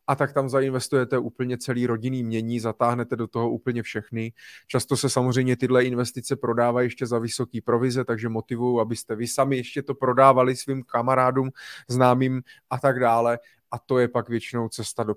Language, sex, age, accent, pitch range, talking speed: Czech, male, 20-39, native, 130-155 Hz, 175 wpm